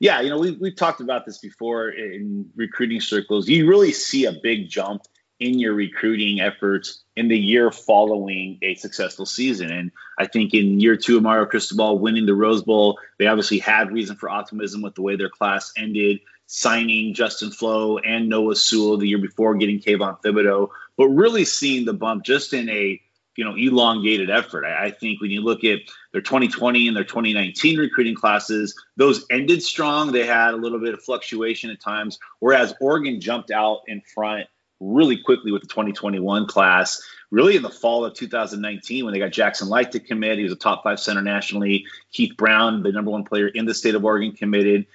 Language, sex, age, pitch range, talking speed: English, male, 30-49, 105-115 Hz, 195 wpm